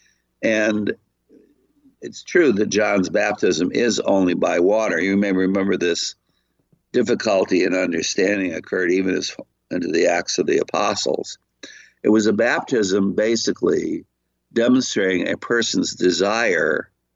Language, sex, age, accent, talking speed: English, male, 60-79, American, 120 wpm